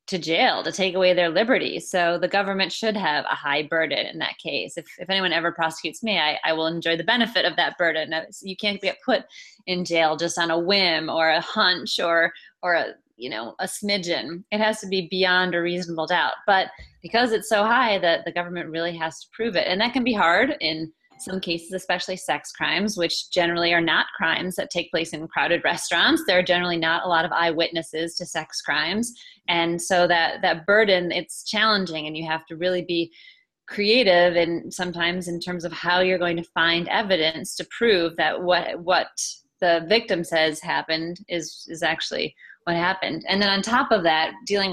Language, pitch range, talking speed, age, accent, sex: English, 165-195 Hz, 205 wpm, 30-49, American, female